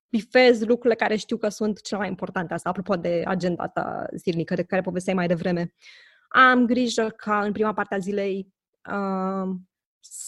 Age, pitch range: 20-39, 190-225 Hz